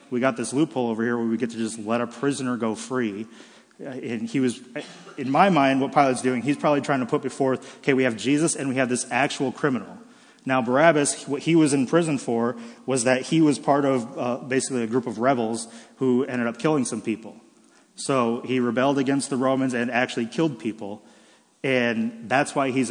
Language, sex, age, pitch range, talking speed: English, male, 30-49, 120-140 Hz, 210 wpm